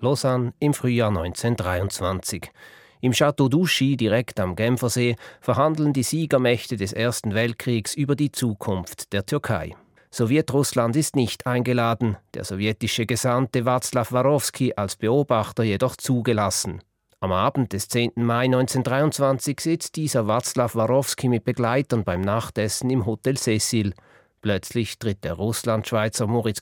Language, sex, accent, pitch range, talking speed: German, male, German, 105-130 Hz, 125 wpm